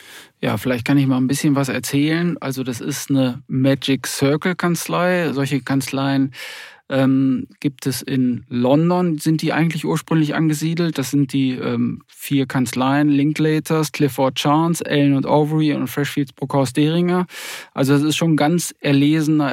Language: German